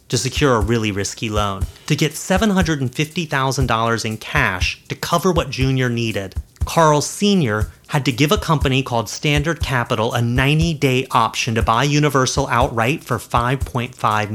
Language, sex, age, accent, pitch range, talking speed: English, male, 30-49, American, 110-150 Hz, 145 wpm